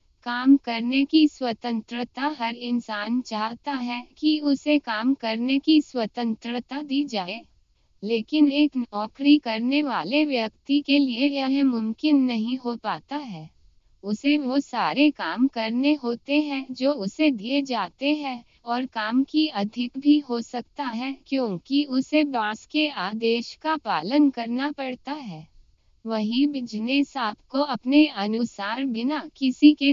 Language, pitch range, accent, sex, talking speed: Hindi, 230-285 Hz, native, female, 135 wpm